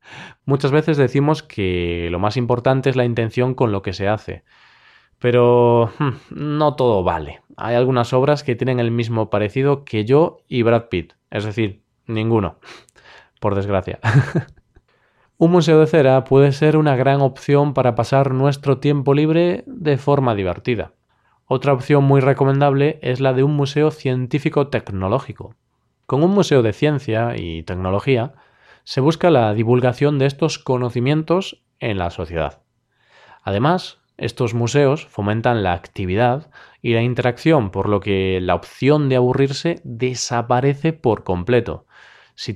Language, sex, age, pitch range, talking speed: Spanish, male, 20-39, 110-145 Hz, 140 wpm